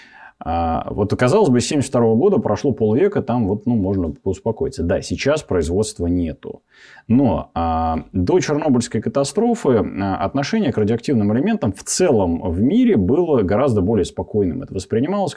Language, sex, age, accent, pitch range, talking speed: Russian, male, 30-49, native, 95-145 Hz, 145 wpm